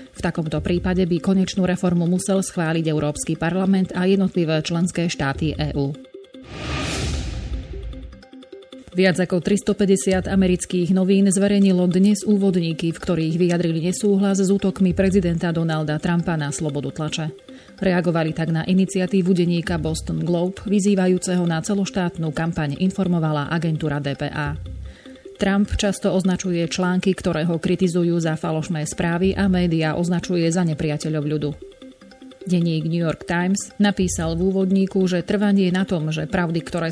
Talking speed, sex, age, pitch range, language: 130 wpm, female, 30-49, 160-190 Hz, Slovak